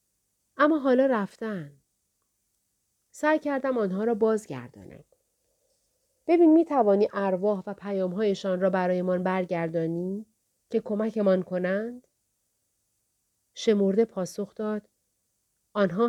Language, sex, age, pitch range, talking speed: Persian, female, 40-59, 180-240 Hz, 85 wpm